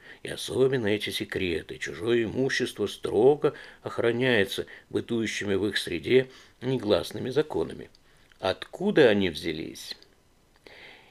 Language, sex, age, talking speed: Russian, male, 50-69, 90 wpm